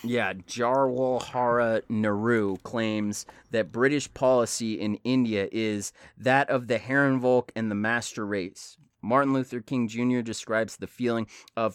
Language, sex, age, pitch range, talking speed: English, male, 30-49, 110-125 Hz, 135 wpm